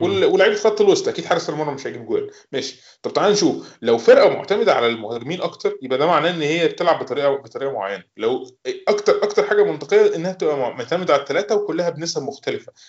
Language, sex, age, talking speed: Arabic, male, 20-39, 195 wpm